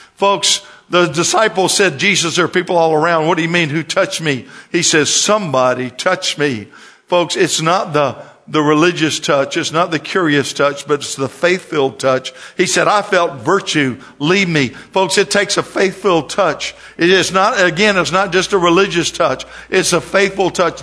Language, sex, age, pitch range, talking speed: English, male, 50-69, 140-185 Hz, 190 wpm